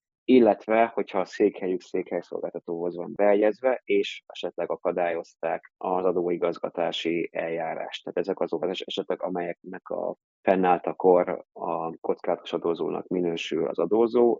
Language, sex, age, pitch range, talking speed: Hungarian, male, 20-39, 85-105 Hz, 110 wpm